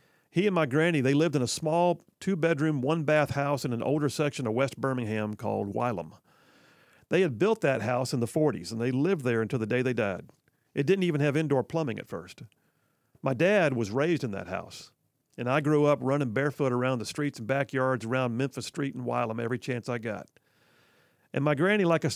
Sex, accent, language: male, American, English